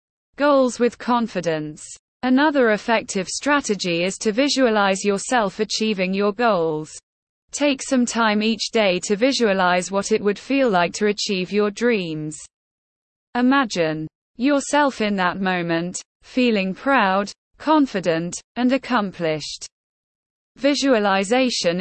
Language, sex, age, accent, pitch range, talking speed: English, female, 20-39, British, 185-245 Hz, 110 wpm